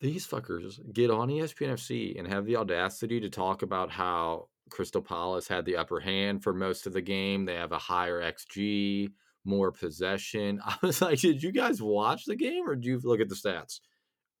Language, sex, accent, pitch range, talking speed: English, male, American, 95-135 Hz, 200 wpm